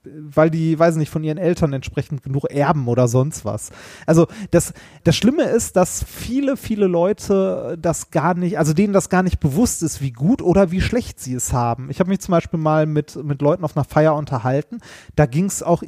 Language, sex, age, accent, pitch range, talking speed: German, male, 30-49, German, 145-195 Hz, 215 wpm